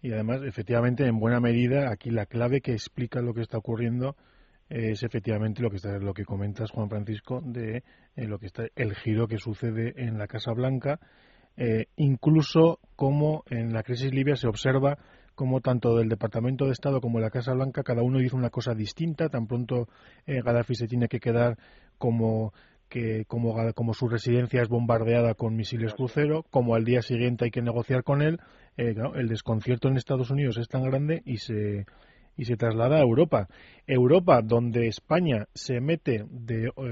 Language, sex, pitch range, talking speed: Spanish, male, 115-135 Hz, 185 wpm